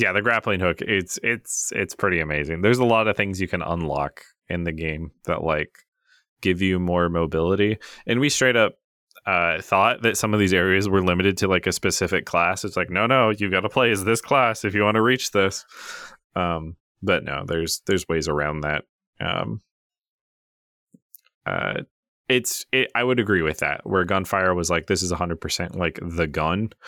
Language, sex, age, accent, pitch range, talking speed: English, male, 20-39, American, 85-115 Hz, 200 wpm